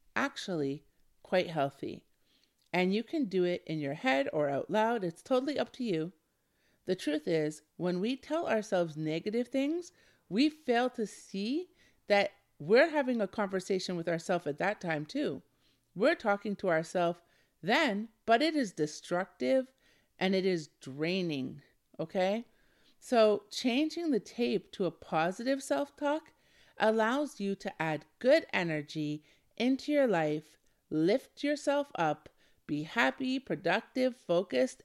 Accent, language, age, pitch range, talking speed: American, English, 50-69, 165-245 Hz, 140 wpm